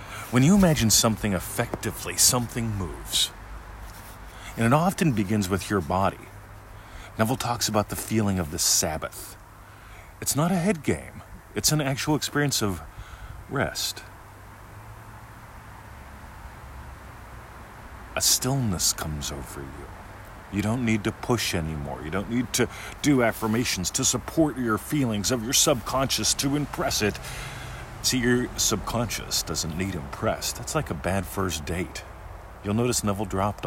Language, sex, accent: English, male, American